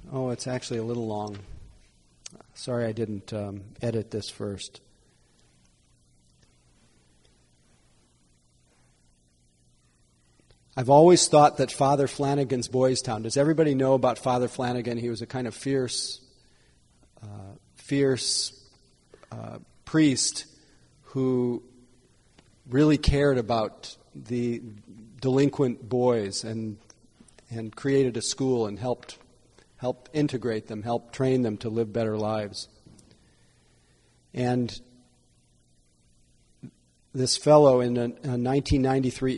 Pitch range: 110-130 Hz